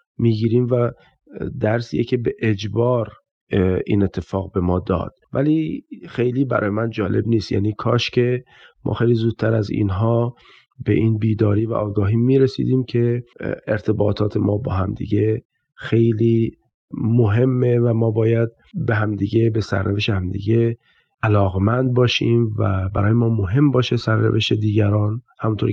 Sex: male